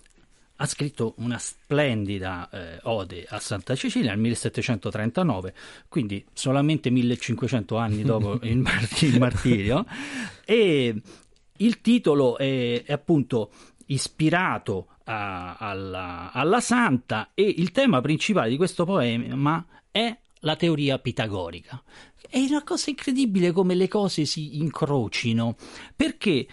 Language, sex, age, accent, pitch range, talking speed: Italian, male, 40-59, native, 120-195 Hz, 115 wpm